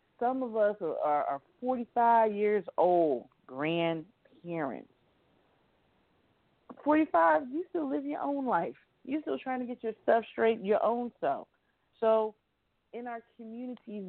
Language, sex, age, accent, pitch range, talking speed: English, female, 40-59, American, 165-230 Hz, 130 wpm